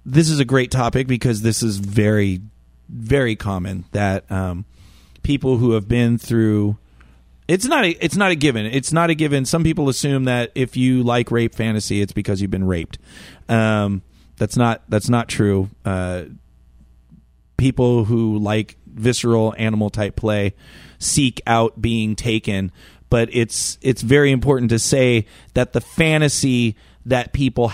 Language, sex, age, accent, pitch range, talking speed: English, male, 30-49, American, 100-120 Hz, 160 wpm